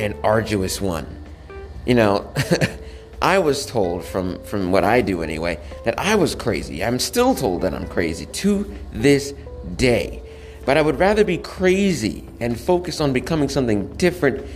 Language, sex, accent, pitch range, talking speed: English, male, American, 90-135 Hz, 160 wpm